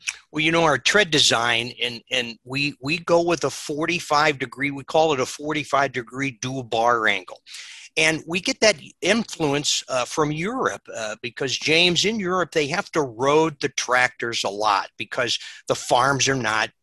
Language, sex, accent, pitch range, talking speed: English, male, American, 130-170 Hz, 170 wpm